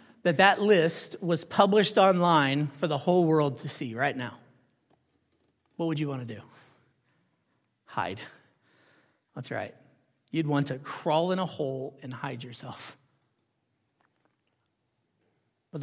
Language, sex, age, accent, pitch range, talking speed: English, male, 40-59, American, 135-160 Hz, 130 wpm